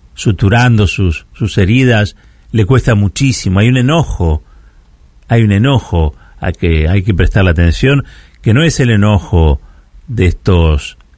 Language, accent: Spanish, Argentinian